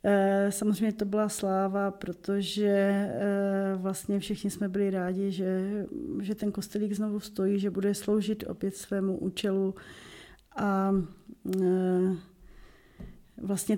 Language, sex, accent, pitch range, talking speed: Czech, female, native, 195-215 Hz, 105 wpm